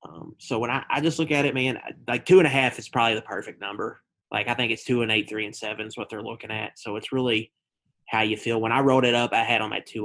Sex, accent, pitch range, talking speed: male, American, 110-120 Hz, 305 wpm